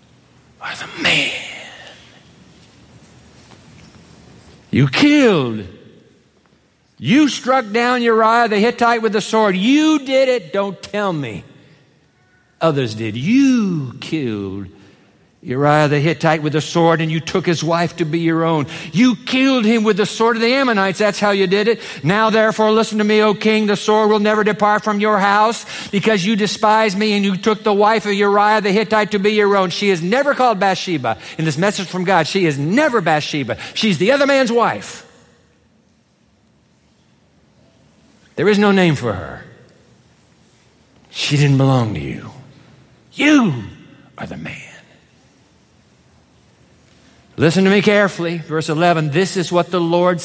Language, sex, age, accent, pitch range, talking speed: English, male, 60-79, American, 175-225 Hz, 155 wpm